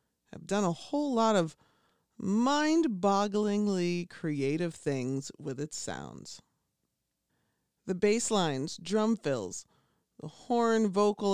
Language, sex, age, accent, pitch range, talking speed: English, female, 40-59, American, 160-215 Hz, 105 wpm